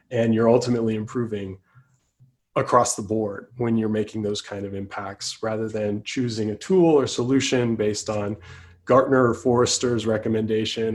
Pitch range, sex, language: 105-125 Hz, male, English